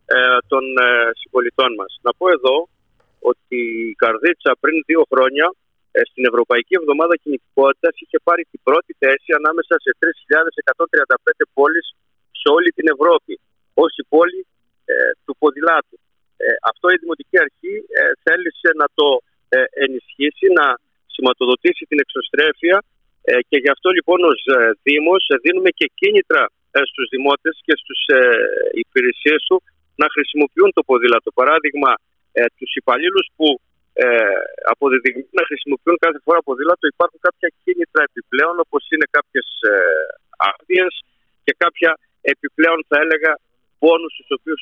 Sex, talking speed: male, 125 wpm